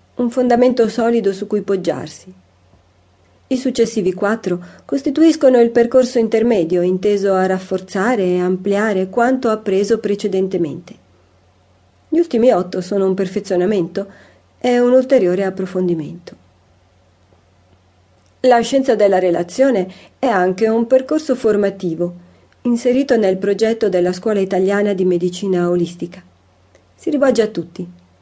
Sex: female